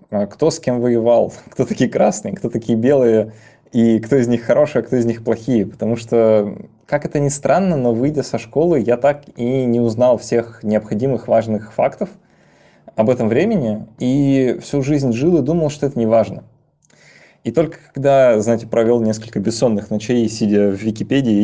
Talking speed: 175 wpm